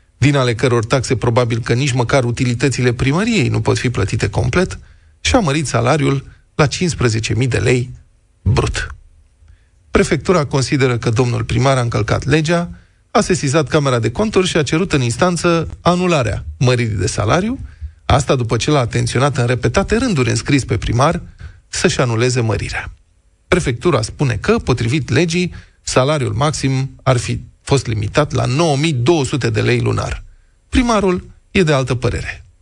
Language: Romanian